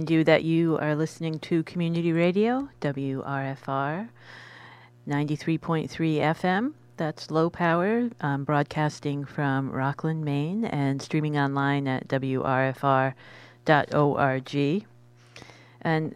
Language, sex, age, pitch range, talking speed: English, female, 40-59, 130-155 Hz, 90 wpm